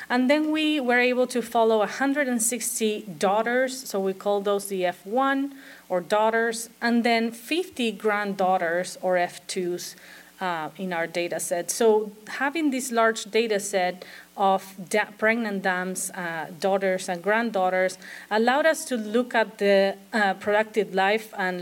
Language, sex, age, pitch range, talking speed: English, female, 30-49, 185-245 Hz, 140 wpm